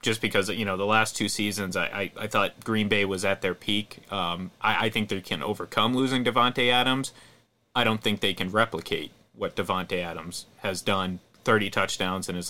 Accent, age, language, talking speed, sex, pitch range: American, 30-49, English, 205 wpm, male, 95-115 Hz